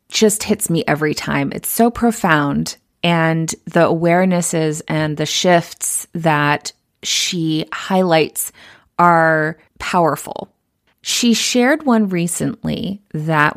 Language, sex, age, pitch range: English, female, 30-49, 150-180 Hz